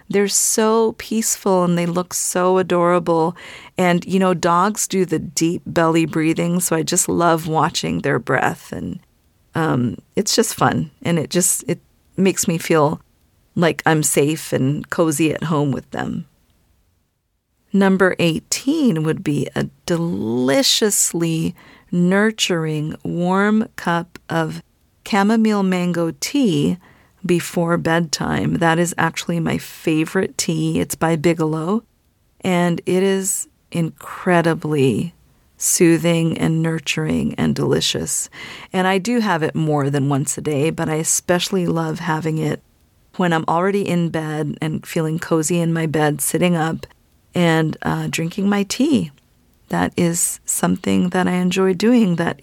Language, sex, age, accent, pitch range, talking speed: English, female, 40-59, American, 155-185 Hz, 135 wpm